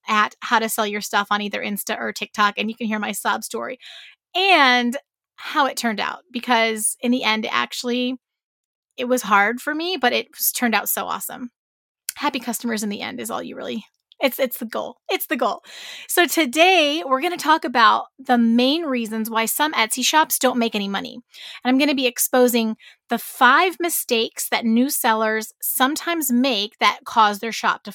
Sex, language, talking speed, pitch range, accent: female, English, 195 wpm, 225-295 Hz, American